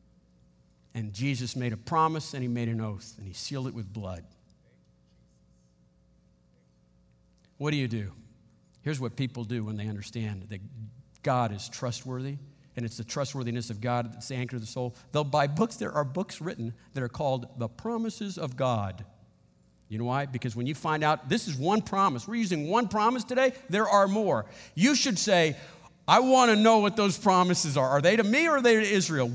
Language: English